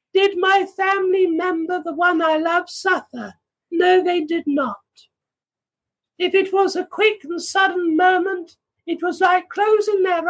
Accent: British